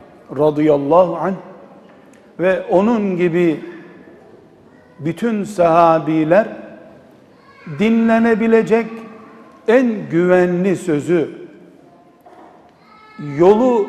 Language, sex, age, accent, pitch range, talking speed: Turkish, male, 60-79, native, 165-210 Hz, 50 wpm